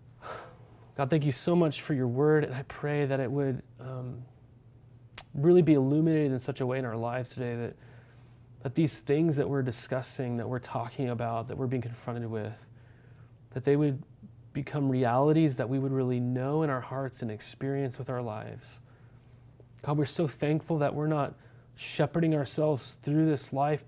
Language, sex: English, male